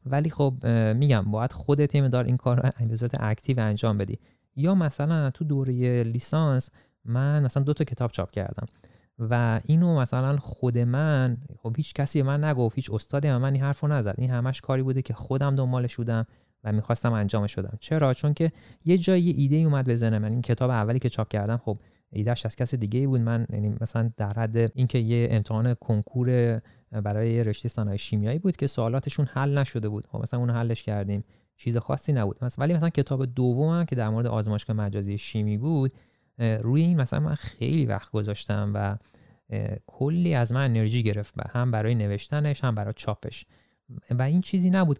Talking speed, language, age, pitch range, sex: 190 wpm, Persian, 30-49, 110-140 Hz, male